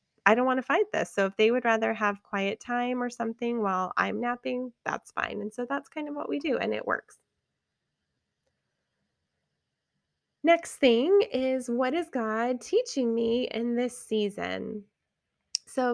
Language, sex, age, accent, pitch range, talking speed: English, female, 20-39, American, 195-250 Hz, 165 wpm